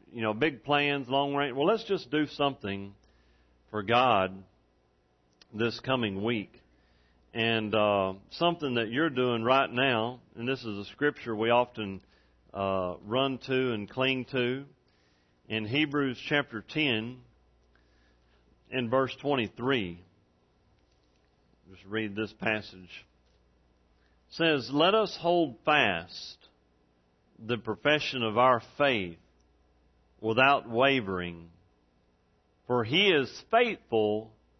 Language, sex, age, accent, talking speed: English, male, 40-59, American, 115 wpm